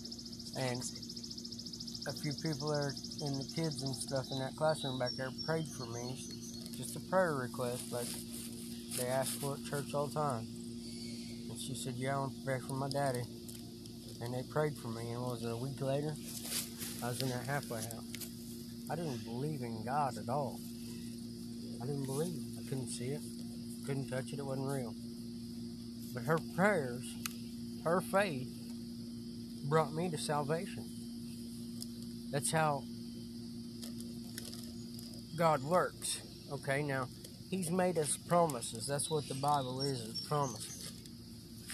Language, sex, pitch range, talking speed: English, male, 115-135 Hz, 150 wpm